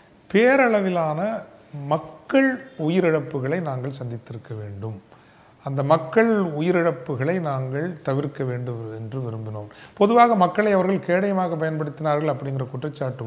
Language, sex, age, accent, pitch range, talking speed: Tamil, male, 40-59, native, 130-185 Hz, 95 wpm